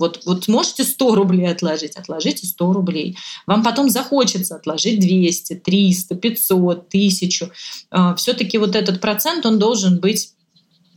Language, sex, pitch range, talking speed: Russian, female, 175-215 Hz, 130 wpm